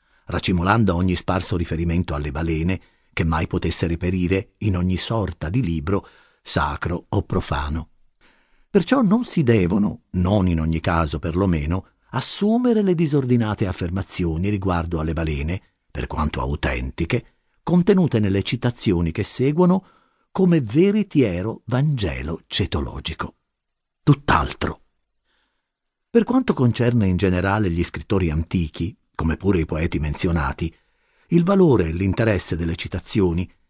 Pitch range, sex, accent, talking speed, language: 85-120 Hz, male, native, 120 wpm, Italian